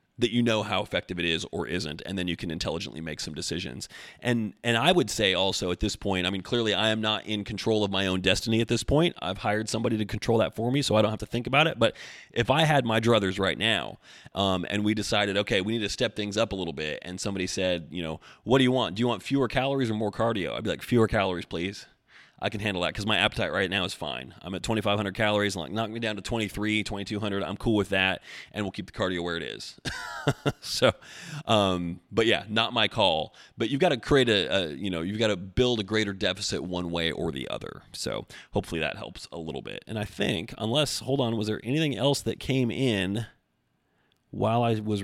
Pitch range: 95-115 Hz